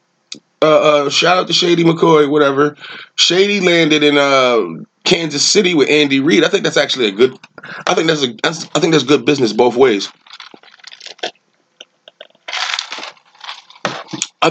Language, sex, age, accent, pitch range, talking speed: English, male, 20-39, American, 140-215 Hz, 150 wpm